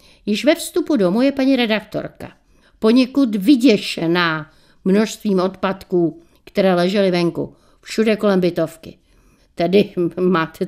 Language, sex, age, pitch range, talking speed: Czech, female, 60-79, 175-230 Hz, 105 wpm